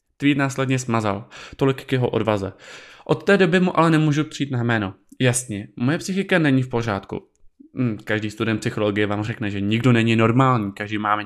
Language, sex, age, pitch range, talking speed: Czech, male, 20-39, 115-170 Hz, 170 wpm